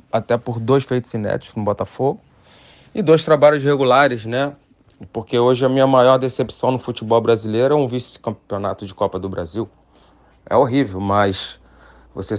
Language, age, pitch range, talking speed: Portuguese, 40-59, 105-125 Hz, 155 wpm